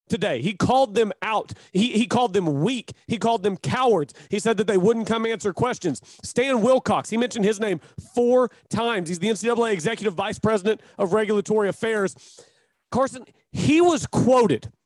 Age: 40-59